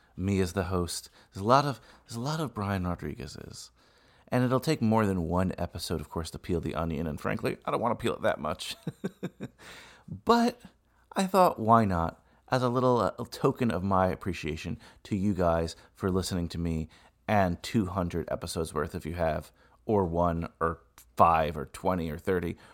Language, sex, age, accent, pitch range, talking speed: English, male, 30-49, American, 85-105 Hz, 185 wpm